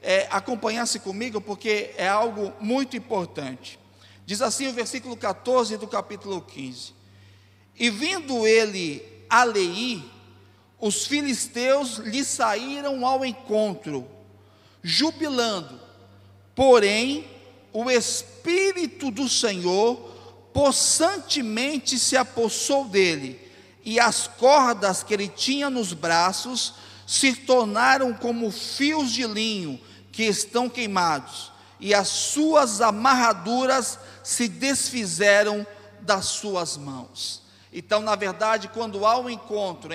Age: 50-69